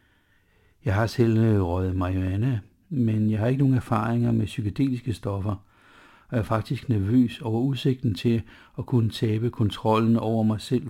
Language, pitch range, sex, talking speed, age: Danish, 95-120 Hz, male, 155 wpm, 60-79